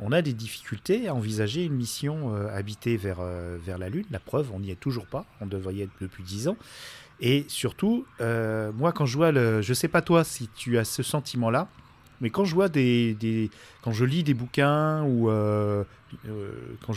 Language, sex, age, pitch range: French, male, 40-59, 110-150 Hz